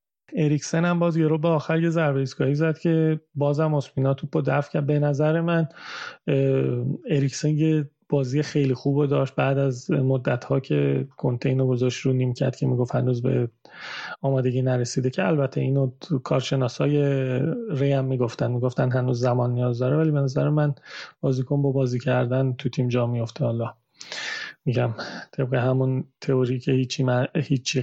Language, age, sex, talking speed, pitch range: Persian, 30-49, male, 155 wpm, 130-155 Hz